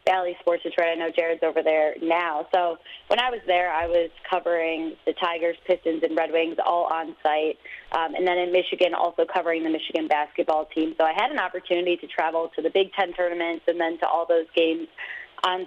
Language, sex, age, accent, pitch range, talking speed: English, female, 20-39, American, 165-190 Hz, 215 wpm